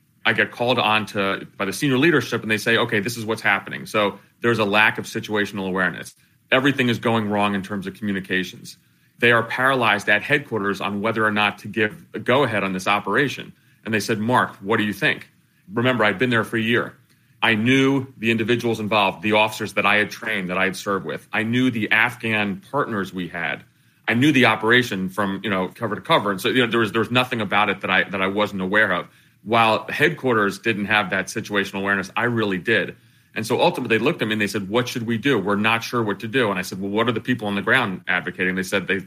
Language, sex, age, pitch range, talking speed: English, male, 30-49, 100-120 Hz, 245 wpm